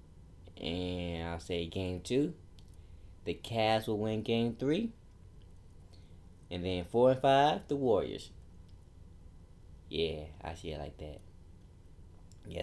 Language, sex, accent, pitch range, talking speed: English, male, American, 85-115 Hz, 115 wpm